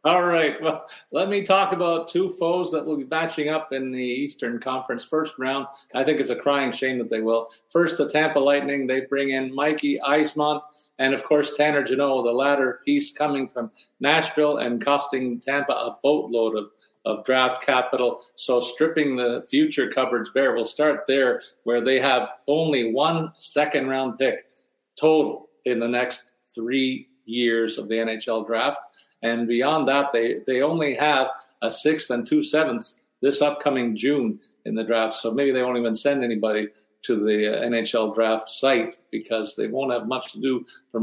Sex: male